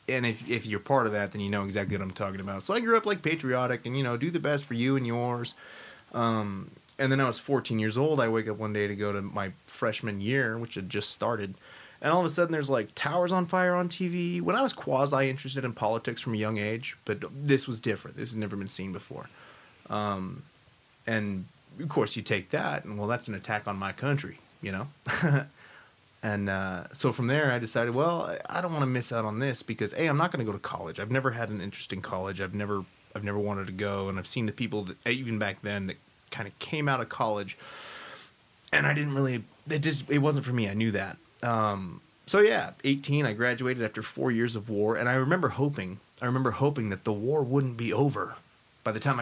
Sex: male